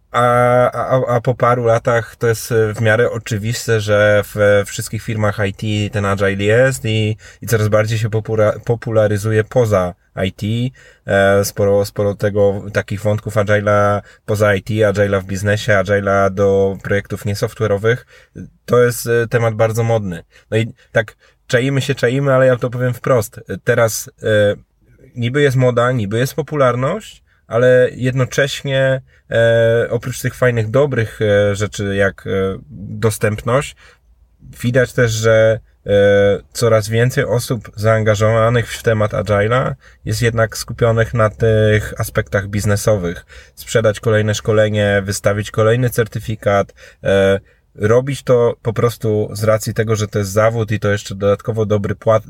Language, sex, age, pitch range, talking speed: Polish, male, 20-39, 105-120 Hz, 135 wpm